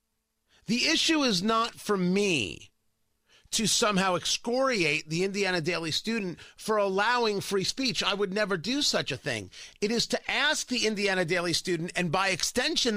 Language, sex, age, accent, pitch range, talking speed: English, male, 40-59, American, 175-230 Hz, 160 wpm